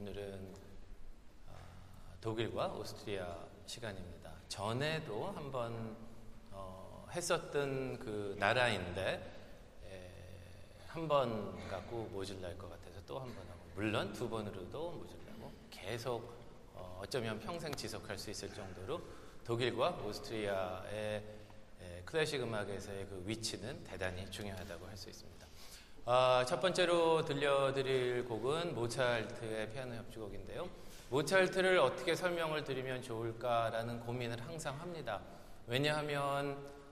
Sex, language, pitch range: male, Korean, 100-135 Hz